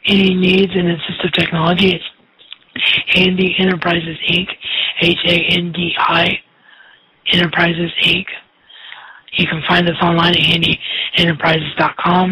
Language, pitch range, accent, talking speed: English, 160-175 Hz, American, 95 wpm